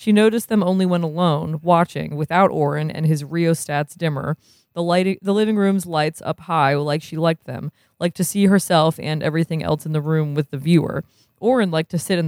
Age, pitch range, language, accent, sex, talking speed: 20-39, 155-185 Hz, English, American, female, 210 wpm